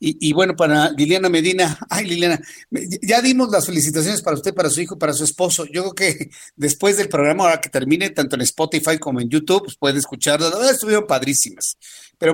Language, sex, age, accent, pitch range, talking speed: Spanish, male, 50-69, Mexican, 140-175 Hz, 200 wpm